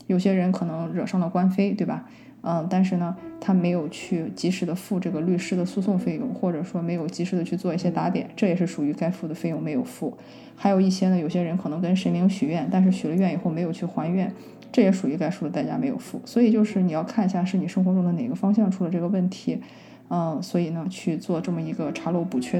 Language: Chinese